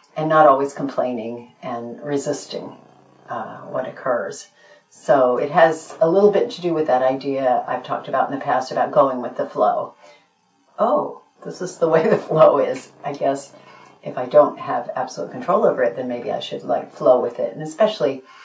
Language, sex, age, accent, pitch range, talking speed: English, female, 50-69, American, 130-155 Hz, 190 wpm